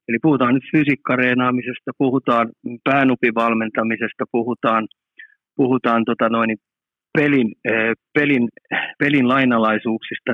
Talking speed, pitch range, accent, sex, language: 80 wpm, 115-145 Hz, native, male, Finnish